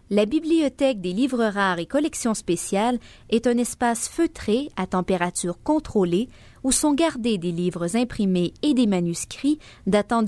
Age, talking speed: 30-49, 145 wpm